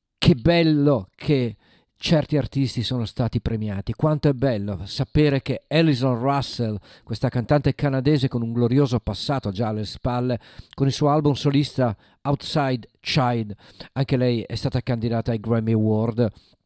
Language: Italian